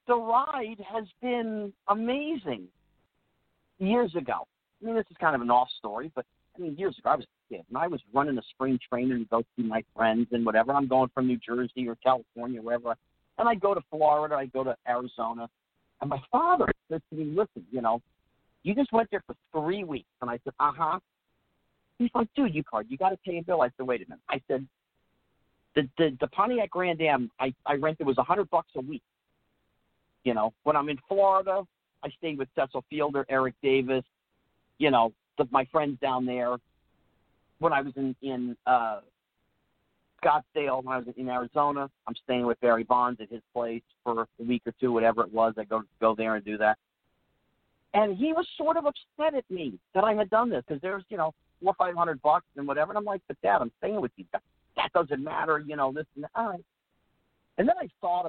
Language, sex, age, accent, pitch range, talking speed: English, male, 50-69, American, 120-190 Hz, 215 wpm